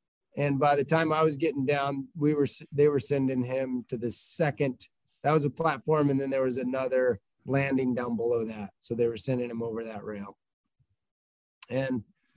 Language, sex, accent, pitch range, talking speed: English, male, American, 130-155 Hz, 190 wpm